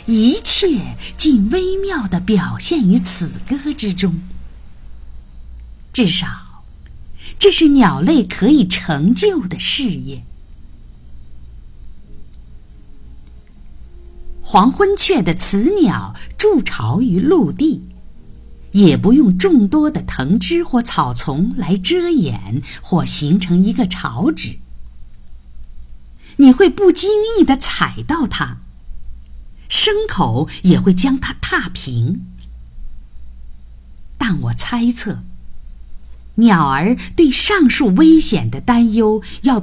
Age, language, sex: 50-69, Chinese, female